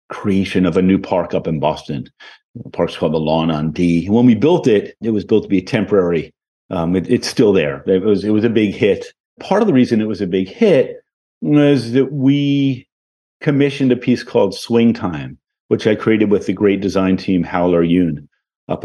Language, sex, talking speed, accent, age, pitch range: English, male, 205 wpm, American, 50-69, 100-135 Hz